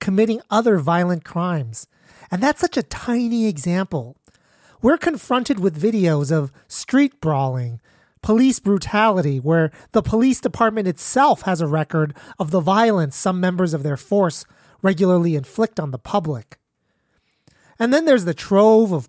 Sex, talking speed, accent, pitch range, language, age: male, 145 wpm, American, 160-220 Hz, English, 30-49